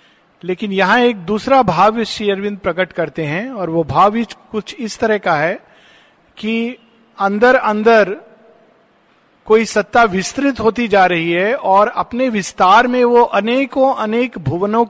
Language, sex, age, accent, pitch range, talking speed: Hindi, male, 50-69, native, 180-225 Hz, 145 wpm